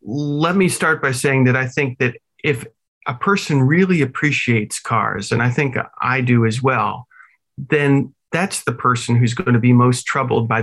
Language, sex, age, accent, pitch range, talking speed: English, male, 40-59, American, 120-145 Hz, 185 wpm